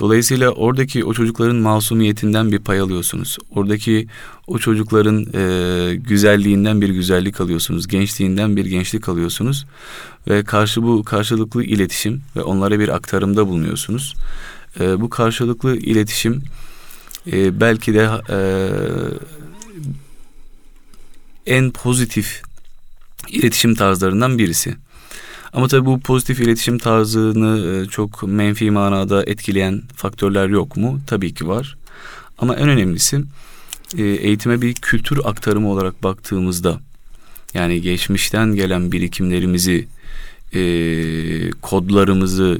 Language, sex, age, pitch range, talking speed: Turkish, male, 30-49, 95-115 Hz, 105 wpm